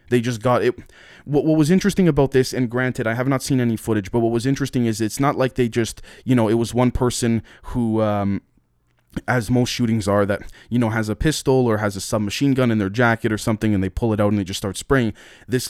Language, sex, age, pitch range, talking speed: English, male, 20-39, 105-125 Hz, 250 wpm